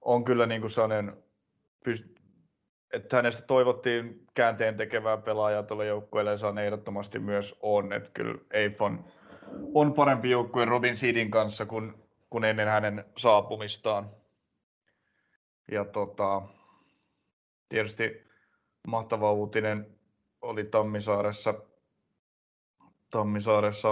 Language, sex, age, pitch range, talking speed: Finnish, male, 30-49, 105-115 Hz, 100 wpm